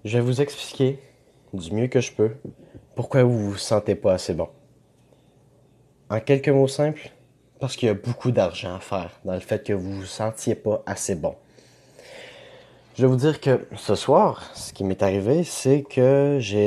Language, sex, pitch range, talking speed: French, male, 95-135 Hz, 195 wpm